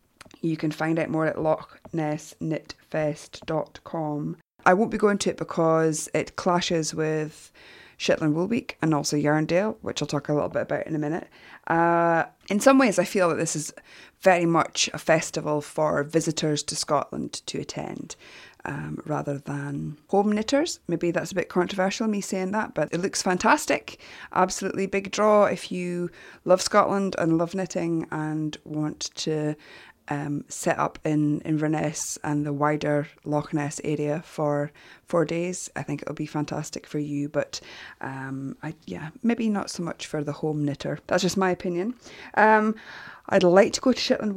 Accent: British